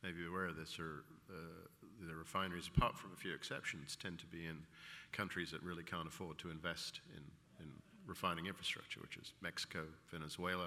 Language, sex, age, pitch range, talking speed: English, male, 50-69, 85-95 Hz, 180 wpm